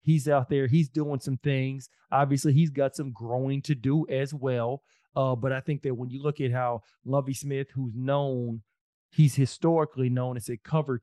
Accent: American